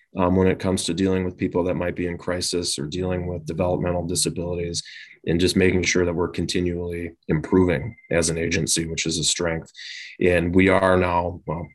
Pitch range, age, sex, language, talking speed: 85-95 Hz, 30-49, male, English, 195 wpm